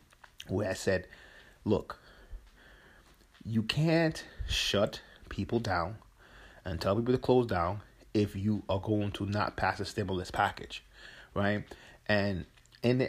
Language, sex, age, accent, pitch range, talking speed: English, male, 30-49, American, 95-115 Hz, 135 wpm